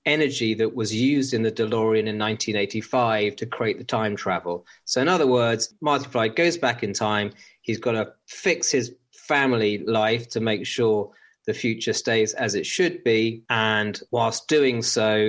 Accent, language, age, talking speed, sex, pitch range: British, English, 30-49, 175 wpm, male, 110-130 Hz